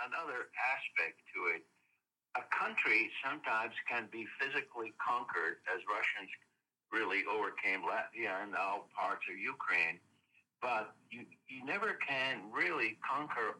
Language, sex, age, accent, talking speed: English, male, 60-79, American, 125 wpm